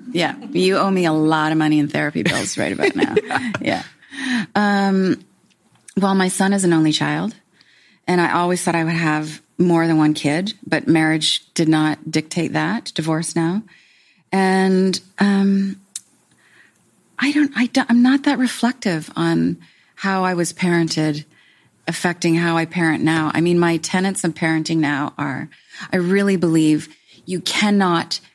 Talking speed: 160 wpm